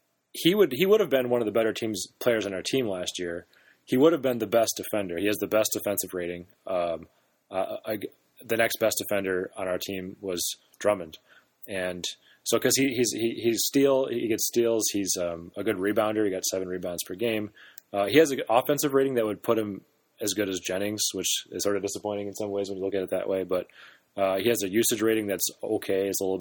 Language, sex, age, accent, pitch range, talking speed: English, male, 30-49, American, 95-120 Hz, 235 wpm